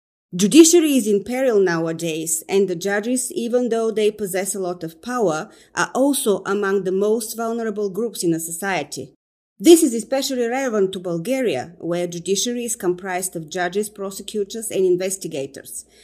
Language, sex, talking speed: English, female, 155 wpm